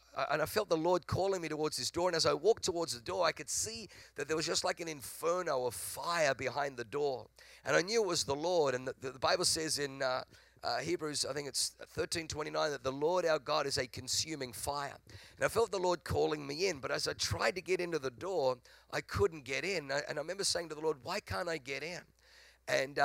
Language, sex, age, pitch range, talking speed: English, male, 50-69, 130-170 Hz, 255 wpm